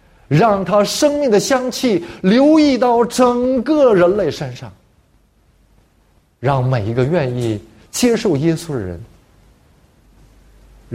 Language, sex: Chinese, male